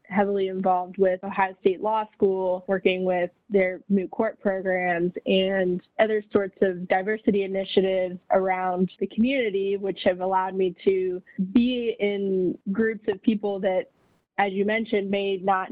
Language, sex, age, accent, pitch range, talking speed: English, female, 20-39, American, 185-205 Hz, 145 wpm